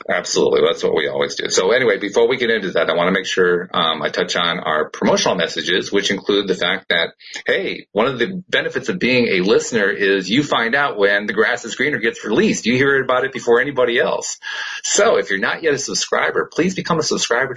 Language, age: English, 40-59